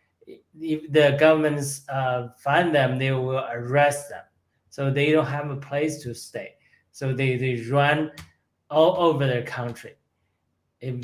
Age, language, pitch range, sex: 20-39, Chinese, 125-150 Hz, male